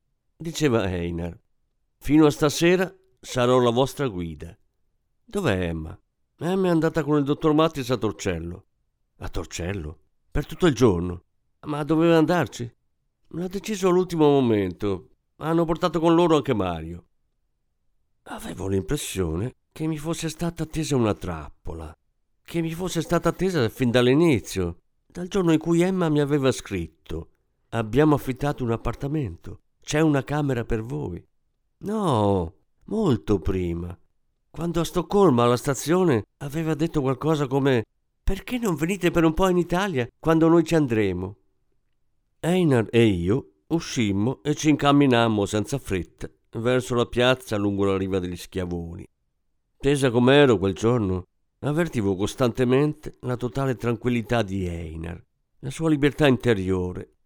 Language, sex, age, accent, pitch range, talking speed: Italian, male, 50-69, native, 95-160 Hz, 135 wpm